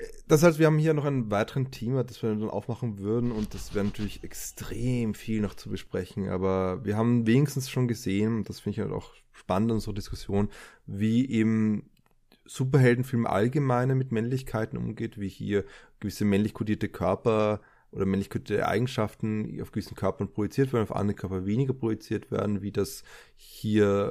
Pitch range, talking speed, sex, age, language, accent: 95-115 Hz, 175 wpm, male, 20-39, German, German